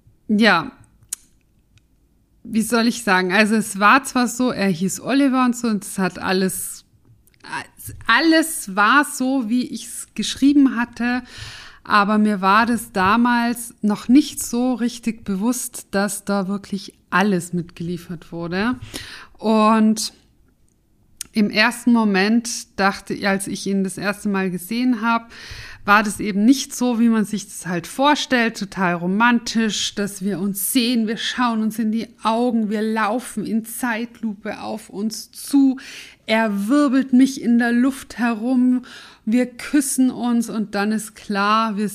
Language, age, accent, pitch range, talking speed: German, 50-69, German, 205-245 Hz, 145 wpm